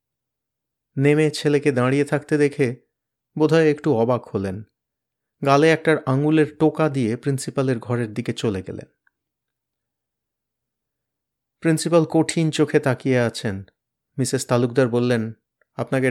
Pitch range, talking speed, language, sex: 120-150 Hz, 75 wpm, Bengali, male